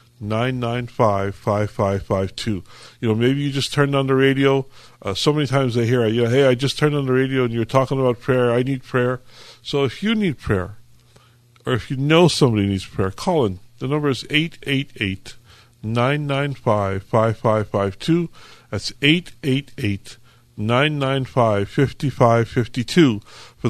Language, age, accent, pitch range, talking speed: English, 50-69, American, 110-140 Hz, 155 wpm